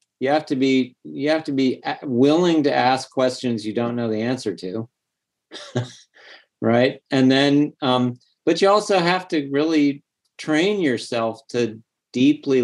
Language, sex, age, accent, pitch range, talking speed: English, male, 50-69, American, 115-135 Hz, 140 wpm